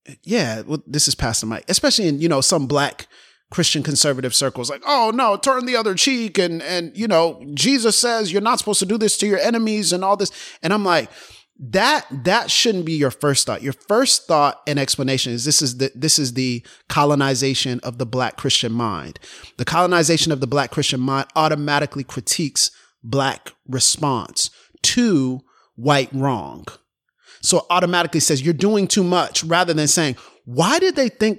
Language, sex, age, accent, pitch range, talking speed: English, male, 30-49, American, 140-195 Hz, 185 wpm